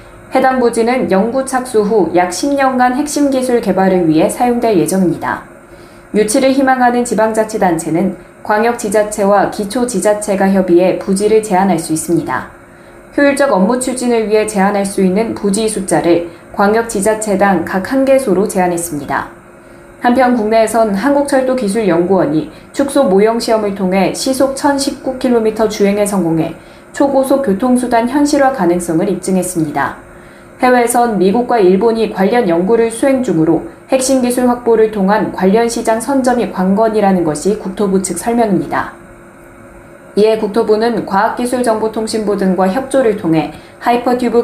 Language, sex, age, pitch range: Korean, female, 20-39, 185-245 Hz